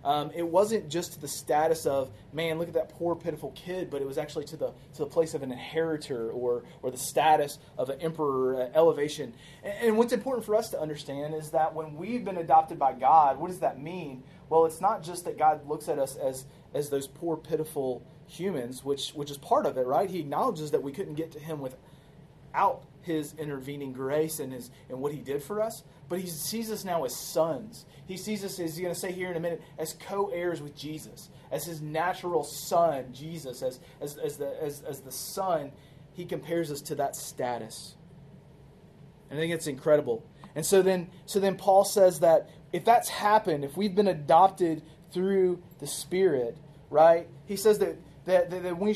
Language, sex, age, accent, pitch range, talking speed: English, male, 30-49, American, 145-180 Hz, 205 wpm